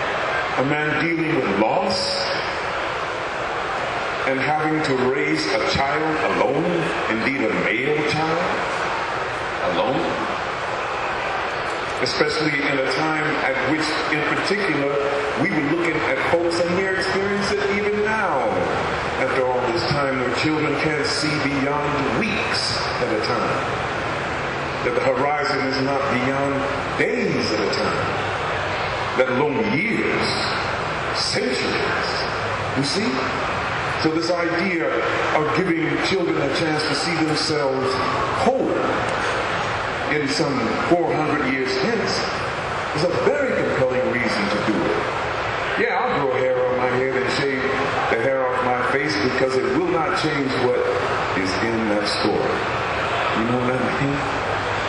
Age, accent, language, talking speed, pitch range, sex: 40-59, American, English, 130 wpm, 130-155 Hz, male